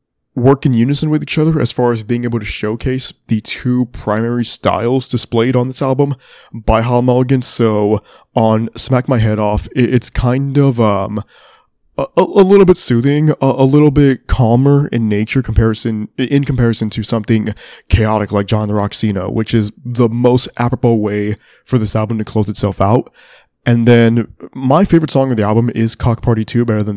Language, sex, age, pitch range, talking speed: English, male, 20-39, 110-130 Hz, 185 wpm